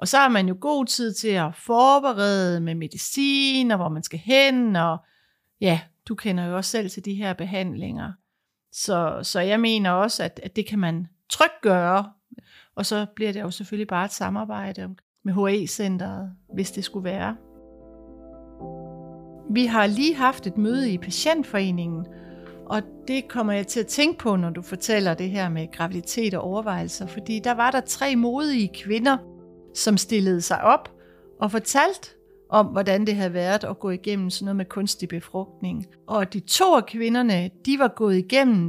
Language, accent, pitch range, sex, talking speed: Danish, native, 180-230 Hz, female, 180 wpm